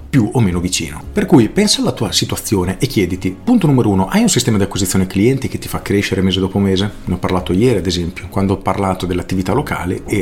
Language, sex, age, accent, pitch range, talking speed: Italian, male, 40-59, native, 95-115 Hz, 235 wpm